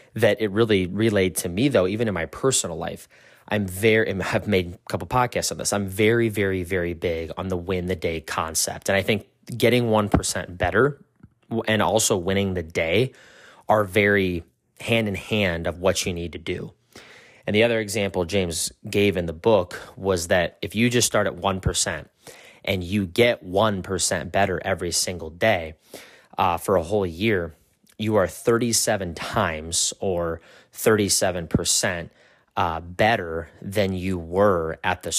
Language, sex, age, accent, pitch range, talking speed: English, male, 30-49, American, 90-110 Hz, 165 wpm